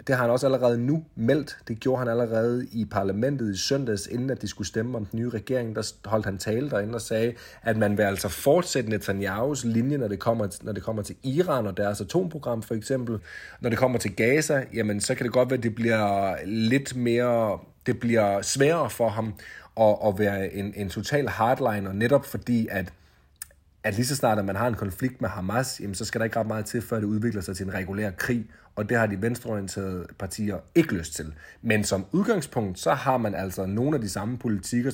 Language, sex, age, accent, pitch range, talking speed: Danish, male, 30-49, native, 100-120 Hz, 215 wpm